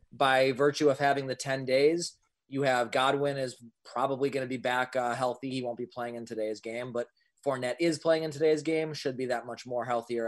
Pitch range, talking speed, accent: 120-145 Hz, 220 wpm, American